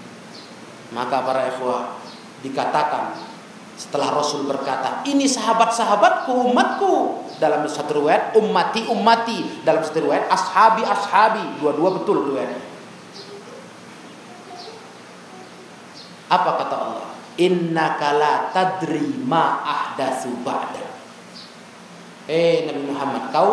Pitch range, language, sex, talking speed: 150-250 Hz, Indonesian, male, 85 wpm